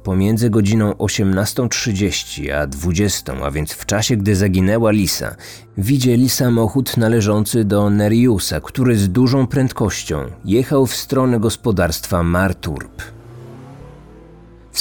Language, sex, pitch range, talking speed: Polish, male, 105-125 Hz, 110 wpm